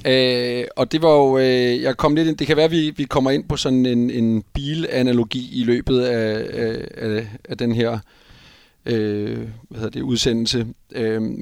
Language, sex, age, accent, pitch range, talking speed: Danish, male, 40-59, native, 115-130 Hz, 185 wpm